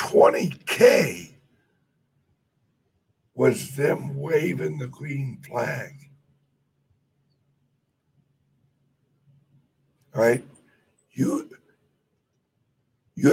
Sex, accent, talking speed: male, American, 50 wpm